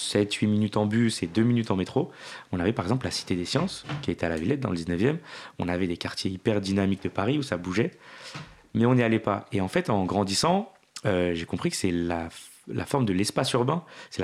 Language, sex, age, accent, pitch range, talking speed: French, male, 30-49, French, 90-120 Hz, 255 wpm